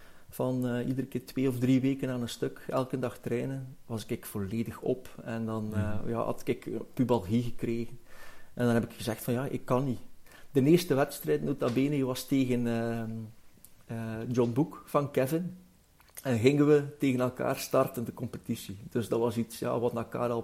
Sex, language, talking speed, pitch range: male, Dutch, 185 wpm, 115-130 Hz